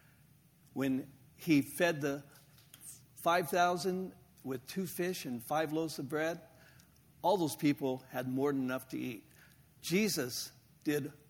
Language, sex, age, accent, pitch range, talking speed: English, male, 60-79, American, 140-185 Hz, 125 wpm